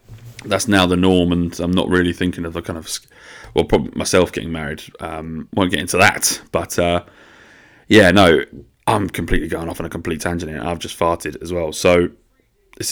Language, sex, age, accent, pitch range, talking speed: English, male, 20-39, British, 85-105 Hz, 200 wpm